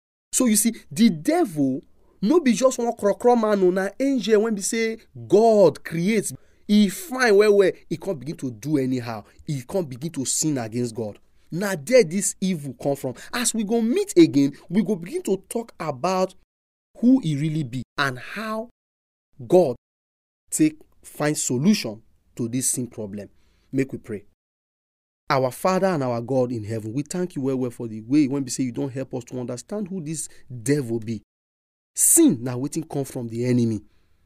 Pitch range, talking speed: 120-195 Hz, 185 wpm